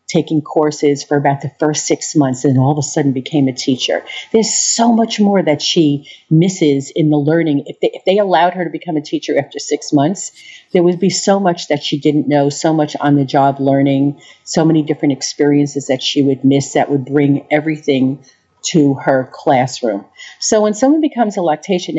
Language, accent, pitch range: English, American, 140-175 Hz